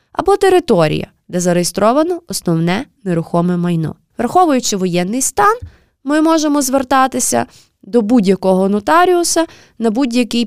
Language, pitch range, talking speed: Ukrainian, 185-275 Hz, 105 wpm